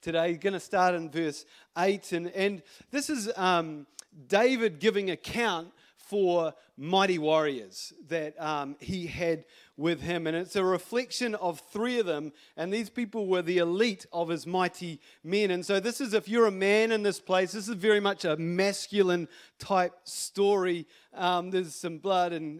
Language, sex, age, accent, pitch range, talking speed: English, male, 40-59, Australian, 165-205 Hz, 180 wpm